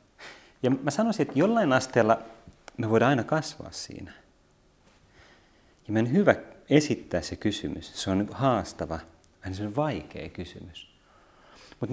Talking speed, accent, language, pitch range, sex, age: 130 wpm, native, Finnish, 85-115 Hz, male, 30-49